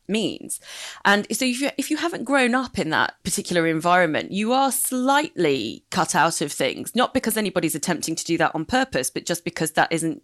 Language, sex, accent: English, female, British